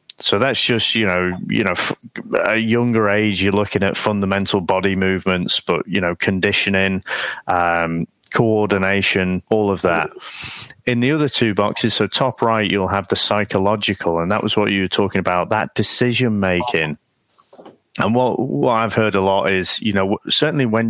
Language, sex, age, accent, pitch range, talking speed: English, male, 30-49, British, 95-110 Hz, 170 wpm